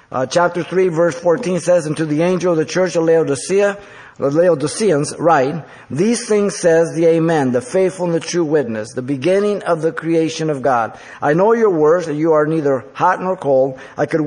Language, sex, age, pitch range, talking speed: English, male, 50-69, 150-195 Hz, 205 wpm